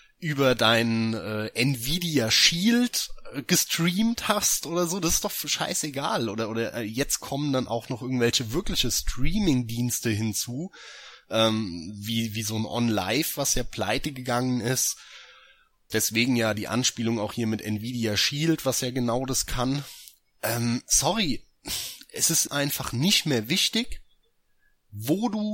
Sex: male